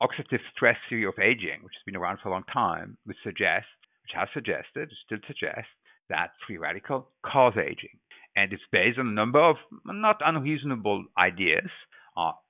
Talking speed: 175 wpm